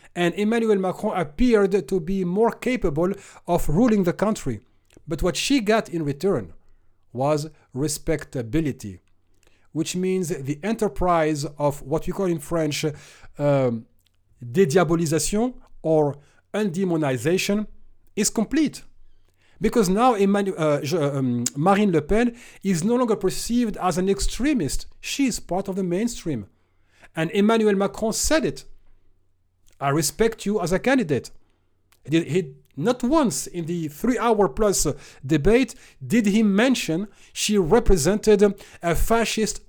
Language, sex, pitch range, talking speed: English, male, 140-210 Hz, 120 wpm